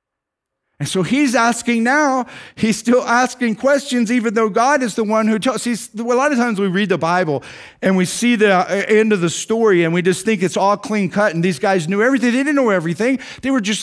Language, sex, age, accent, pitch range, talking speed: English, male, 50-69, American, 185-240 Hz, 235 wpm